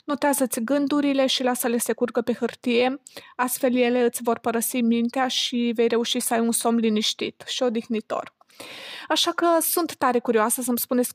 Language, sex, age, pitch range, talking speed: Romanian, female, 20-39, 235-260 Hz, 165 wpm